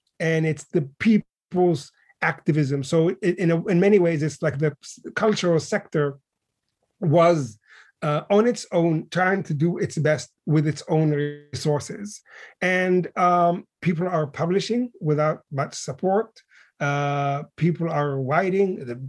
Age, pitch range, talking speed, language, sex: 30-49, 150-175 Hz, 135 wpm, English, male